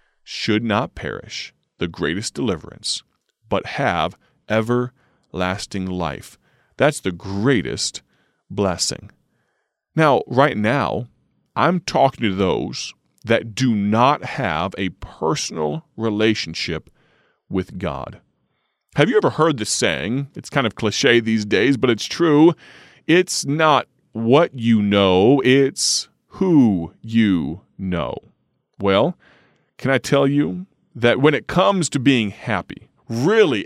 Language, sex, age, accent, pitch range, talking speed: English, male, 30-49, American, 95-135 Hz, 120 wpm